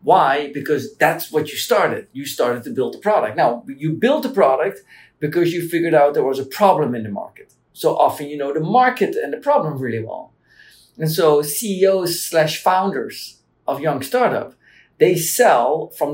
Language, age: Portuguese, 50-69